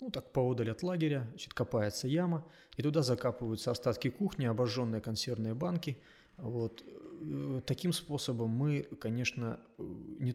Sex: male